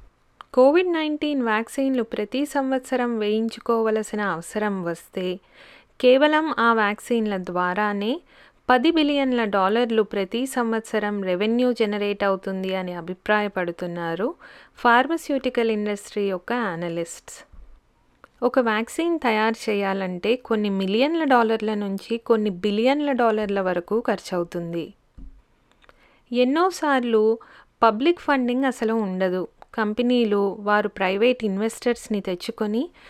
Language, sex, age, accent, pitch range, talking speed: Telugu, female, 30-49, native, 200-250 Hz, 90 wpm